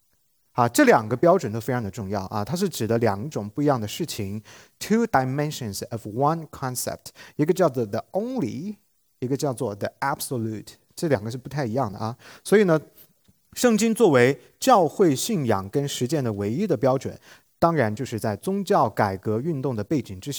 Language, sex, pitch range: English, male, 115-165 Hz